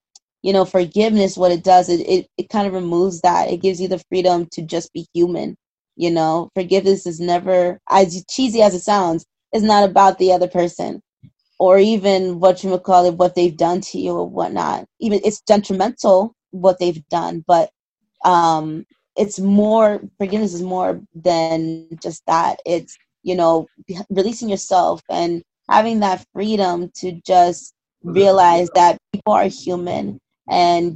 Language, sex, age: English, female, 20-39